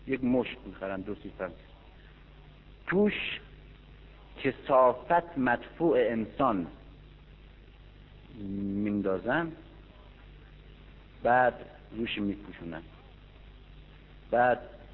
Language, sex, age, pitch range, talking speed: Persian, male, 50-69, 105-145 Hz, 55 wpm